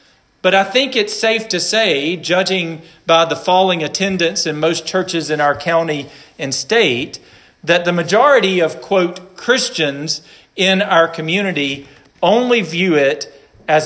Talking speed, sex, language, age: 145 wpm, male, English, 40-59